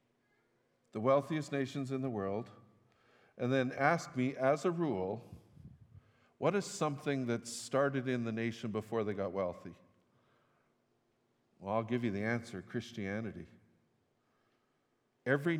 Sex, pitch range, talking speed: male, 115-170 Hz, 125 wpm